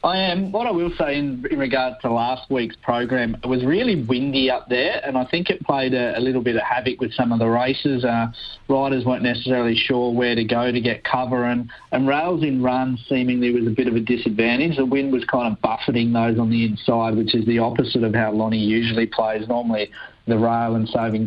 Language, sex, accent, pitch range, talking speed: English, male, Australian, 115-135 Hz, 230 wpm